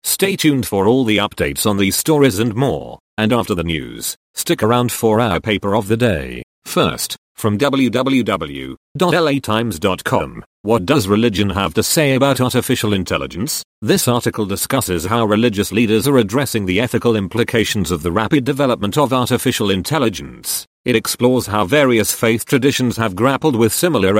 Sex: male